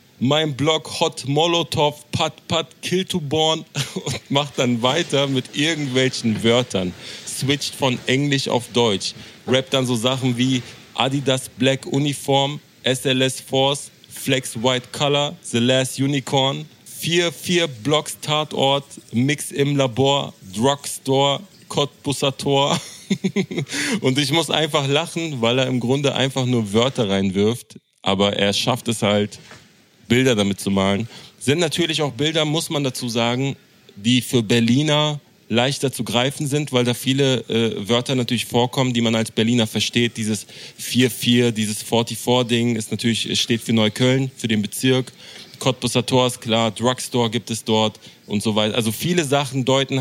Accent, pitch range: German, 120-140 Hz